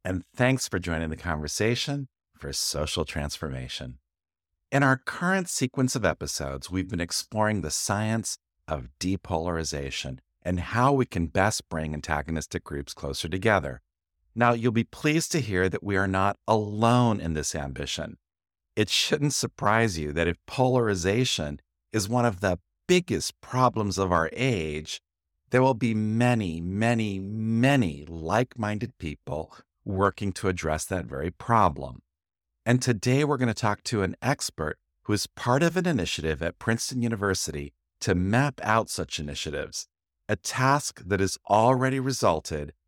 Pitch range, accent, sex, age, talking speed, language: 80-115 Hz, American, male, 50-69, 145 wpm, English